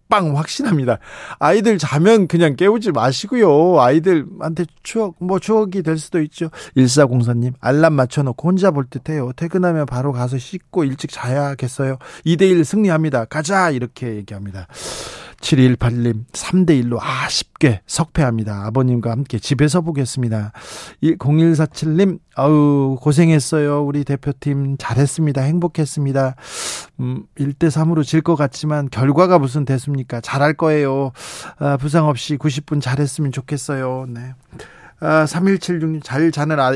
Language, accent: Korean, native